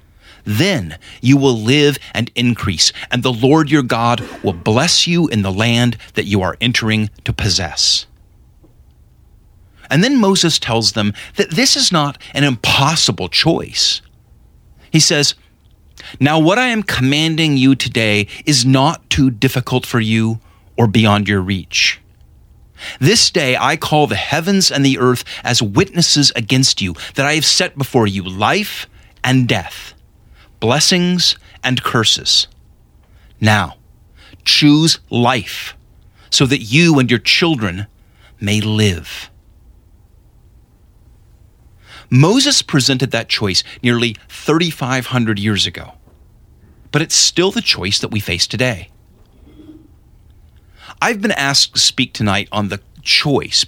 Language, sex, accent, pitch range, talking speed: English, male, American, 100-140 Hz, 130 wpm